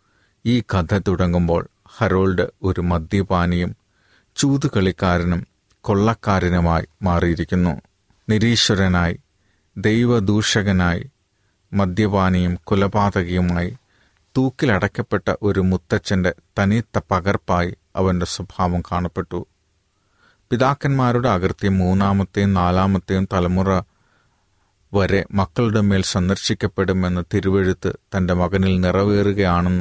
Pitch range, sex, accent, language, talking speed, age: 90-105 Hz, male, native, Malayalam, 70 wpm, 30-49